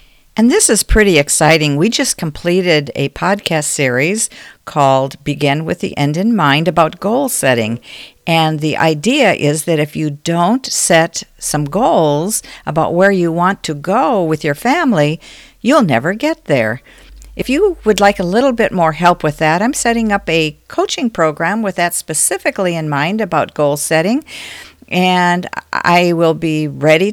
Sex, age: female, 50-69